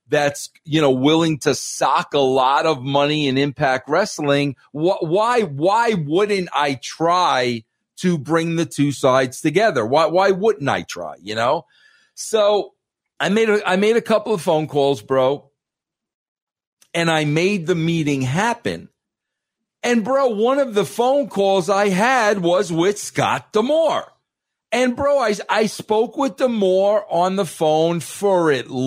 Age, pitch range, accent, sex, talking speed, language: 50-69, 140-205 Hz, American, male, 155 wpm, English